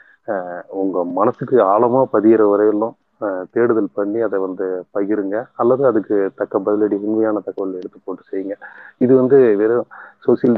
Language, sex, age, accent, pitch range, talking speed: Tamil, male, 30-49, native, 95-110 Hz, 135 wpm